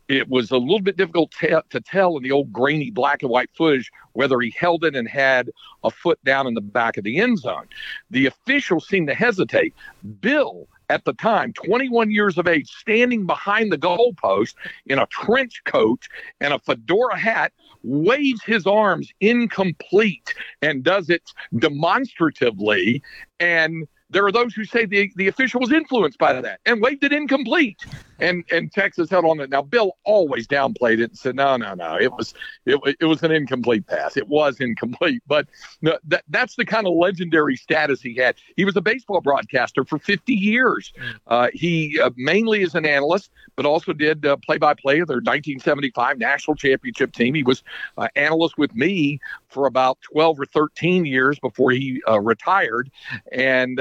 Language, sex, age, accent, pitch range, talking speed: English, male, 50-69, American, 140-210 Hz, 180 wpm